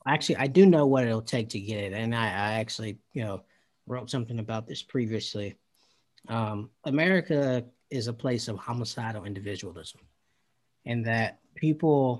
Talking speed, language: 160 wpm, English